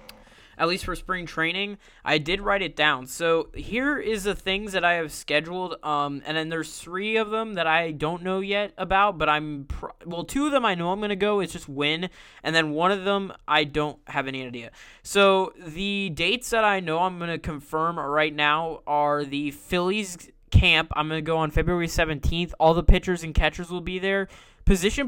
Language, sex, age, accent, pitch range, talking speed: English, male, 20-39, American, 145-185 Hz, 215 wpm